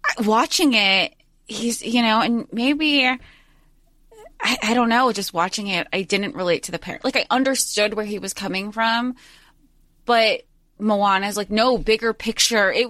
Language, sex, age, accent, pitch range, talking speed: English, female, 20-39, American, 180-255 Hz, 165 wpm